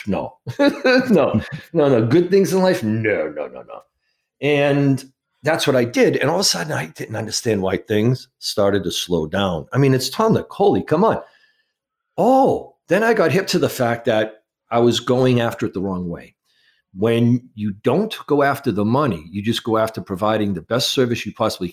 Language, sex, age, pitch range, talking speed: English, male, 50-69, 105-140 Hz, 200 wpm